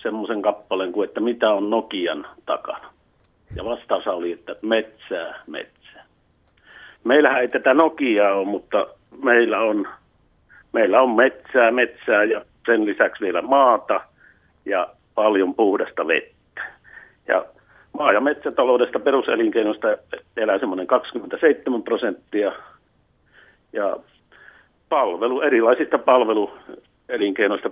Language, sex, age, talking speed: Finnish, male, 60-79, 105 wpm